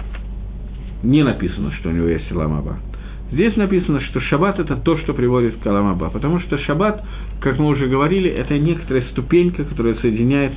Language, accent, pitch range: Russian, native, 120-175 Hz